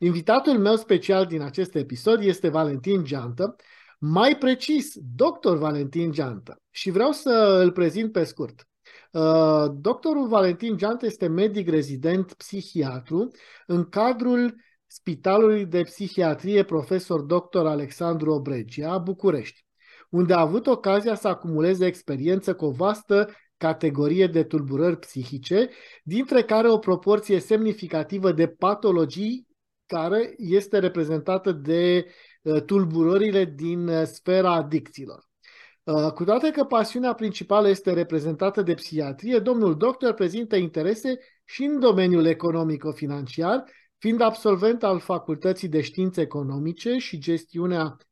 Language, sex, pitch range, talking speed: Romanian, male, 160-220 Hz, 115 wpm